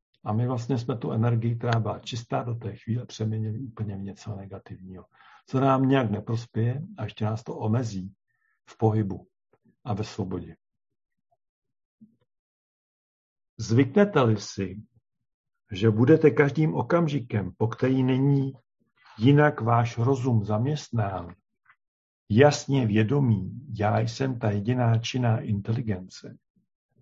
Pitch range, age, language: 105-135 Hz, 50-69, Czech